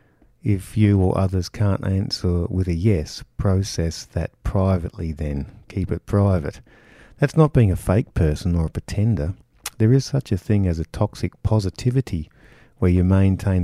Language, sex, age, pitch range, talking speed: English, male, 50-69, 85-110 Hz, 165 wpm